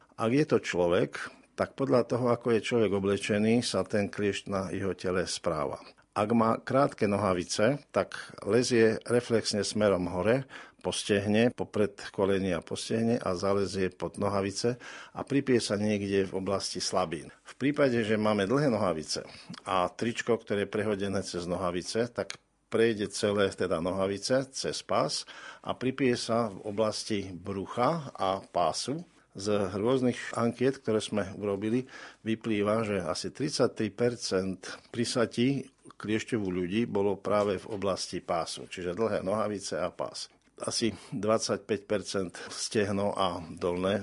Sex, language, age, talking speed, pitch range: male, Slovak, 50-69, 135 wpm, 95-115 Hz